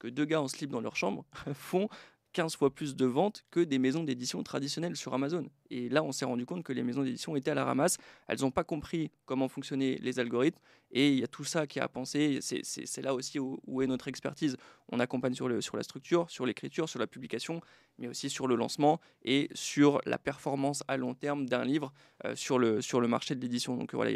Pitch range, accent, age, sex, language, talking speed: 125-145 Hz, French, 20-39, male, French, 250 wpm